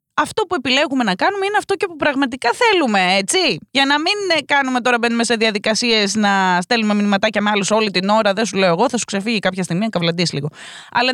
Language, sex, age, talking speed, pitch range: Greek, female, 20-39, 220 wpm, 180-260 Hz